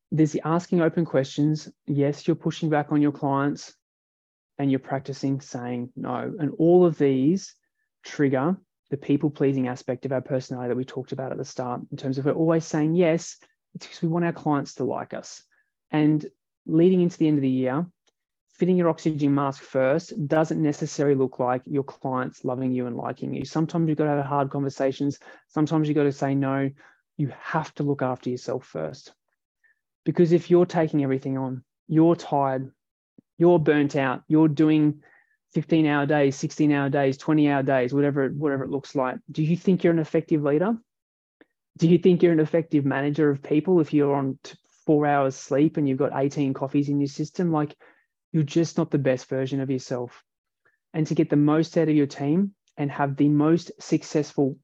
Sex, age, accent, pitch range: male, 20-39, Australian, 135-160 Hz